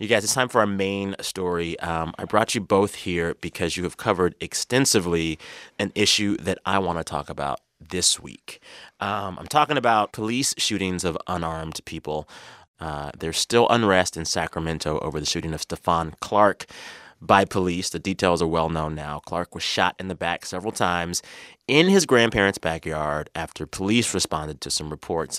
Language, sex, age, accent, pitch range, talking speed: English, male, 30-49, American, 85-105 Hz, 180 wpm